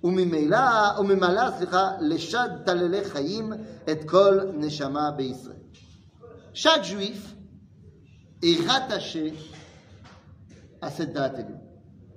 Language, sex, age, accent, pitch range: French, male, 40-59, French, 150-205 Hz